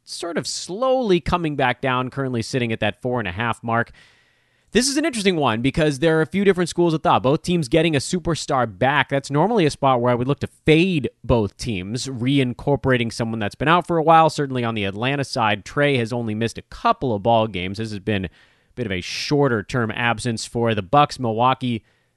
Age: 30-49